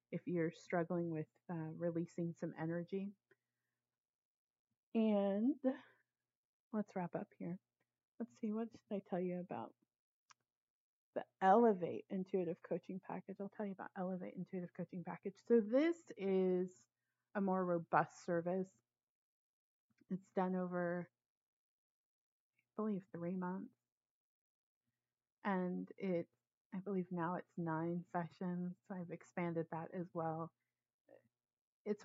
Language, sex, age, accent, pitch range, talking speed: English, female, 30-49, American, 170-200 Hz, 120 wpm